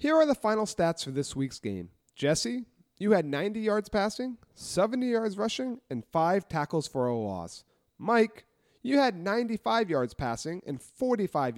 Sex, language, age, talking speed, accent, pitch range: male, English, 30-49, 165 wpm, American, 130-205 Hz